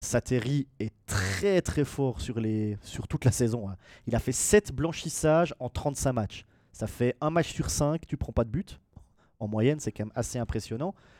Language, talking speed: French, 205 wpm